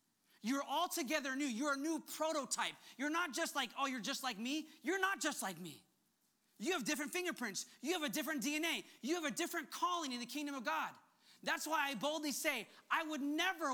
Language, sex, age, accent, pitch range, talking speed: English, male, 30-49, American, 250-325 Hz, 210 wpm